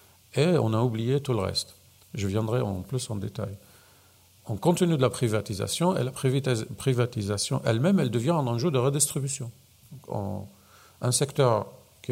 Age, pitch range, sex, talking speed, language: 50-69, 100-135 Hz, male, 155 wpm, French